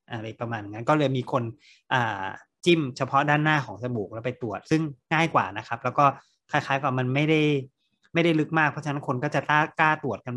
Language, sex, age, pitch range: Thai, male, 30-49, 125-155 Hz